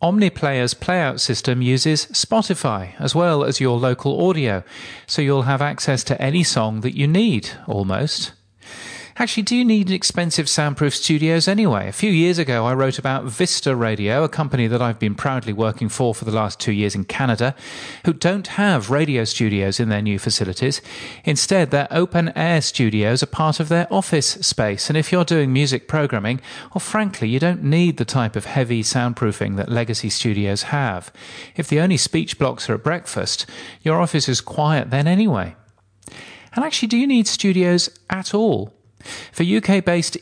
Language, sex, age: English, male, 40-59